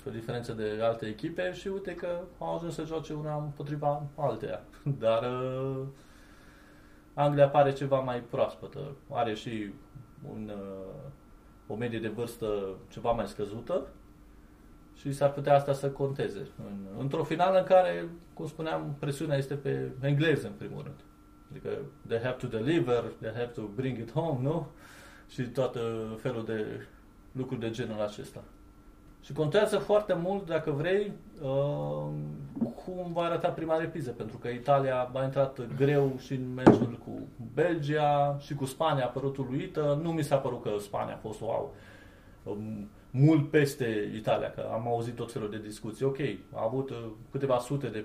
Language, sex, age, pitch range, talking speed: Romanian, male, 20-39, 110-150 Hz, 155 wpm